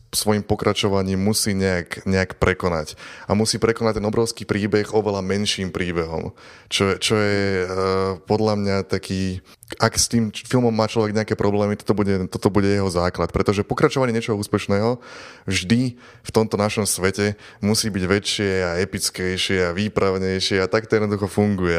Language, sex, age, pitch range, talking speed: Slovak, male, 20-39, 95-110 Hz, 150 wpm